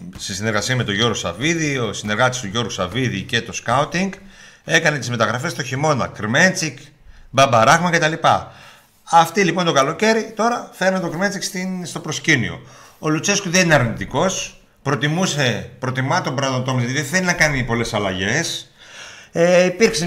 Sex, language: male, Greek